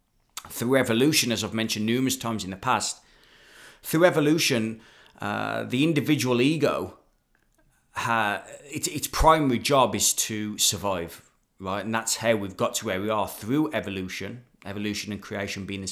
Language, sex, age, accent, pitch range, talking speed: English, male, 30-49, British, 100-125 Hz, 155 wpm